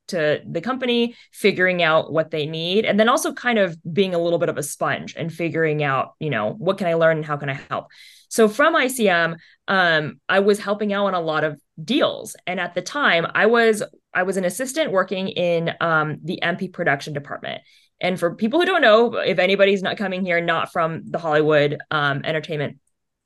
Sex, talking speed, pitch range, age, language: female, 210 wpm, 160-205 Hz, 20-39, English